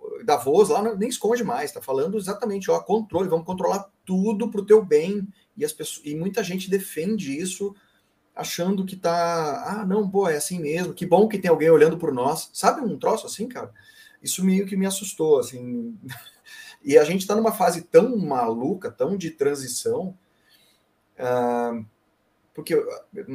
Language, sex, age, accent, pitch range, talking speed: Portuguese, male, 30-49, Brazilian, 145-230 Hz, 170 wpm